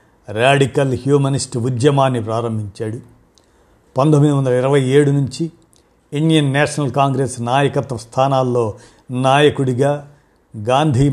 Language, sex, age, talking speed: Telugu, male, 50-69, 85 wpm